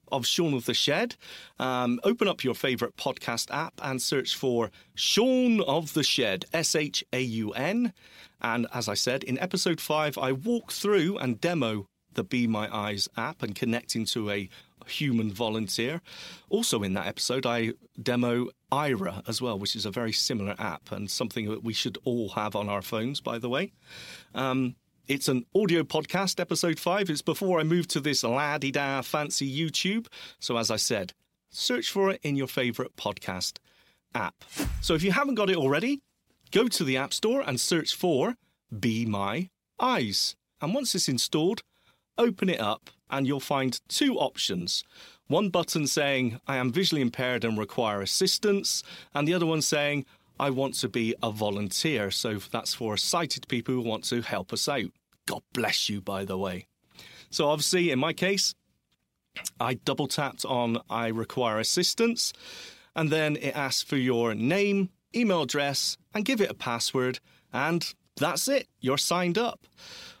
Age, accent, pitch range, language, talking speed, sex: 40-59, British, 115-170 Hz, English, 170 wpm, male